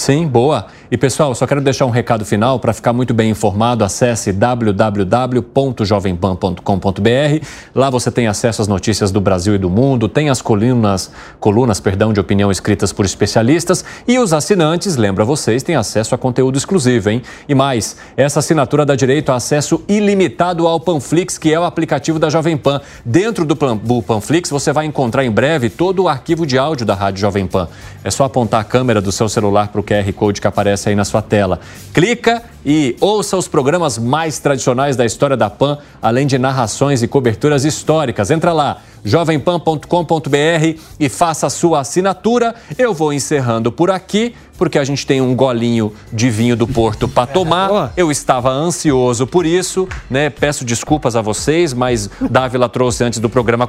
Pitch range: 110-155 Hz